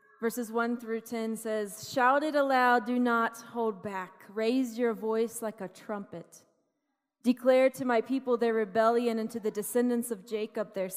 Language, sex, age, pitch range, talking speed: English, female, 30-49, 205-245 Hz, 170 wpm